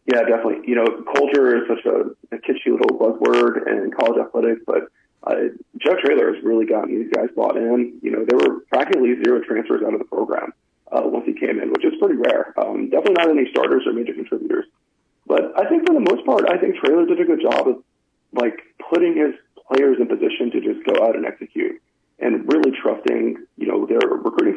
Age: 40-59